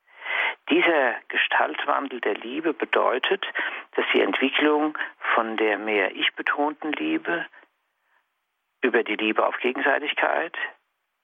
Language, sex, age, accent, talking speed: German, male, 50-69, German, 100 wpm